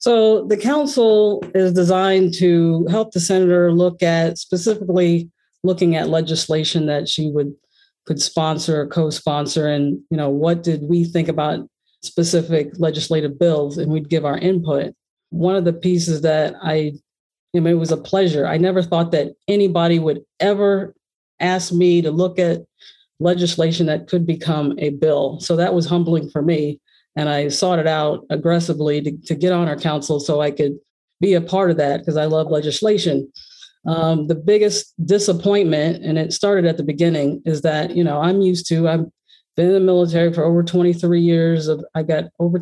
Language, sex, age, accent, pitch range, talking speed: English, female, 40-59, American, 155-185 Hz, 180 wpm